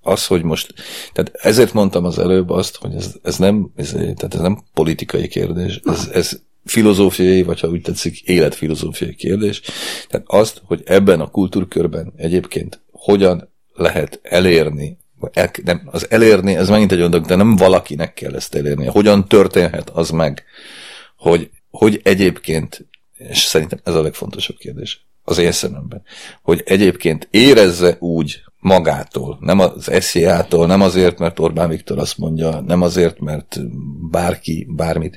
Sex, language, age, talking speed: male, Hungarian, 40-59, 140 wpm